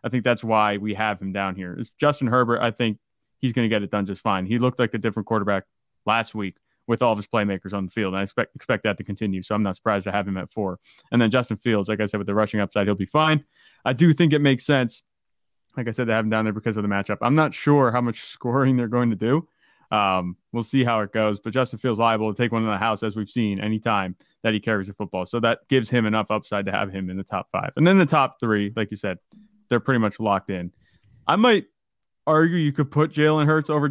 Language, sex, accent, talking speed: English, male, American, 280 wpm